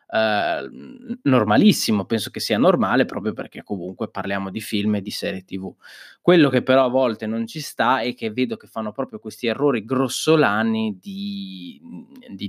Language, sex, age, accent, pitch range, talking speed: Italian, male, 20-39, native, 105-130 Hz, 175 wpm